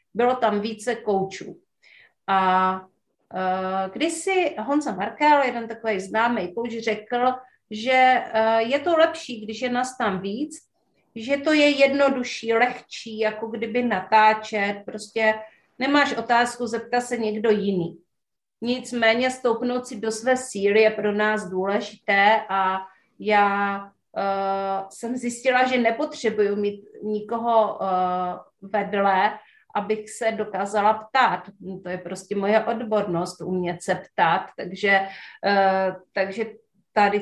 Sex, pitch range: female, 200-240 Hz